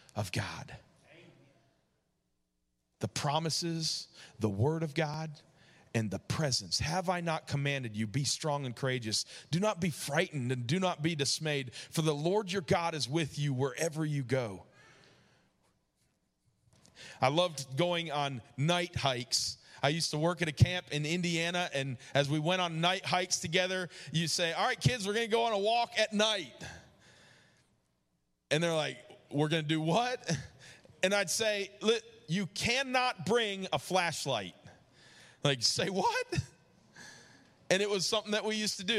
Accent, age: American, 40-59